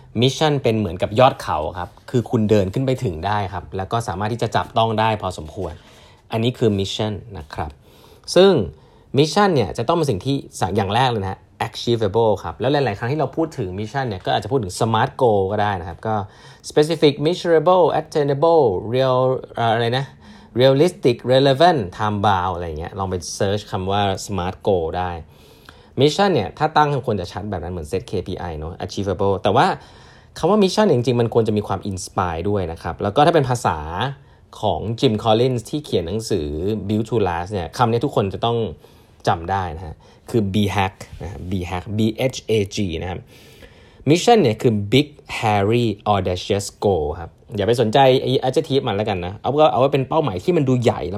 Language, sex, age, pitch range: Thai, male, 20-39, 95-130 Hz